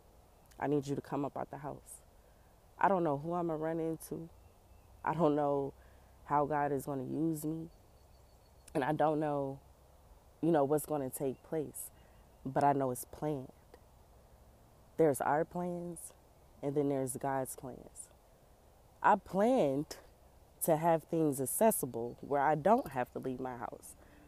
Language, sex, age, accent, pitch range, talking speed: English, female, 20-39, American, 105-160 Hz, 165 wpm